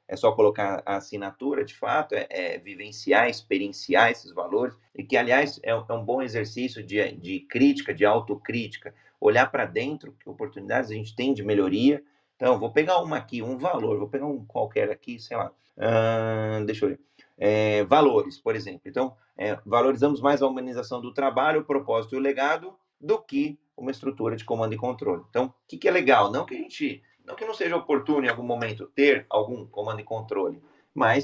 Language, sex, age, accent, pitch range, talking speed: Portuguese, male, 30-49, Brazilian, 110-145 Hz, 190 wpm